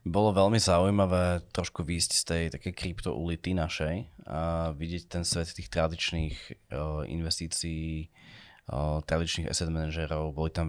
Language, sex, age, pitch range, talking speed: Slovak, male, 20-39, 80-95 Hz, 125 wpm